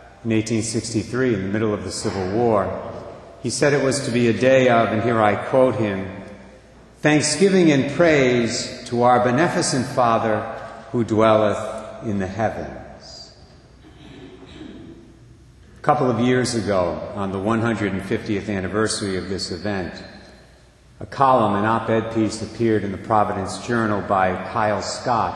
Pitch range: 105-125 Hz